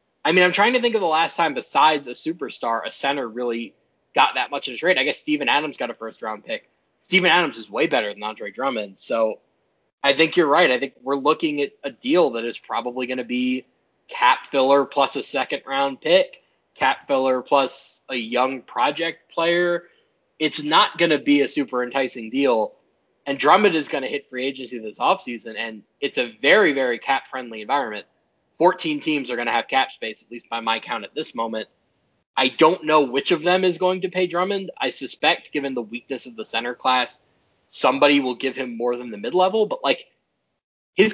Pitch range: 120-165 Hz